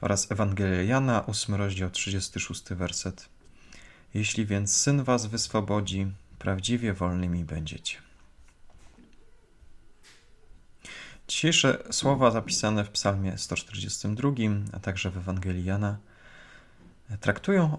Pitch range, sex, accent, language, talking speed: 95-115 Hz, male, native, Polish, 90 wpm